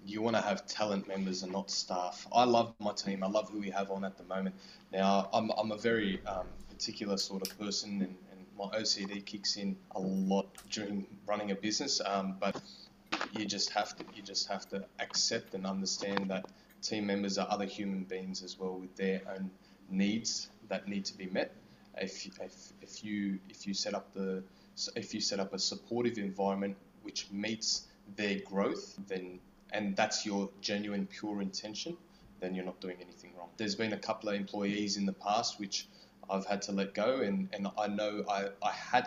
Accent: Australian